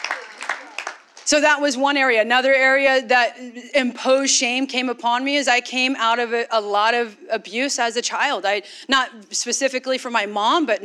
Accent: American